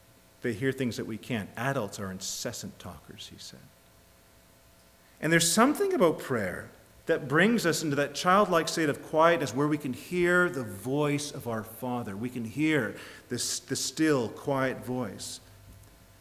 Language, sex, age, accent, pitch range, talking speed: English, male, 40-59, American, 130-195 Hz, 150 wpm